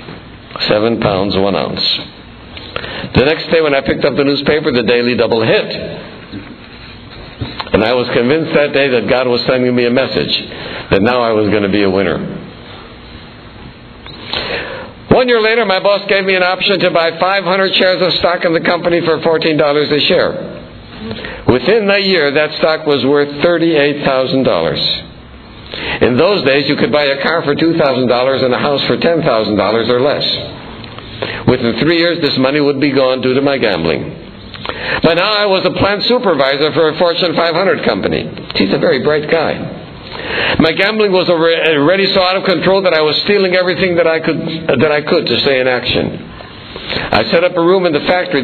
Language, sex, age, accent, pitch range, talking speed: English, male, 60-79, American, 130-175 Hz, 180 wpm